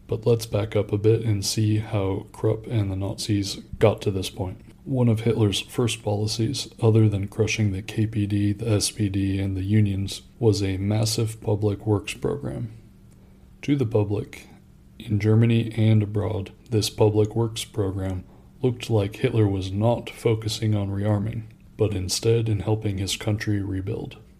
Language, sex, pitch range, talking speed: English, male, 100-110 Hz, 155 wpm